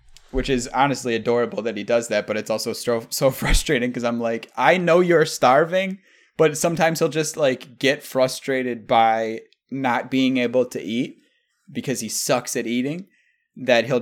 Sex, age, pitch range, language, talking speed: male, 20-39, 105-160 Hz, English, 175 wpm